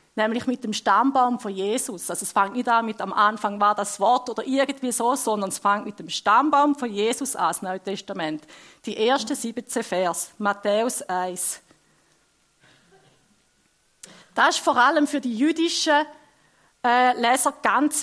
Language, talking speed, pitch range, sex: German, 160 wpm, 215-280 Hz, female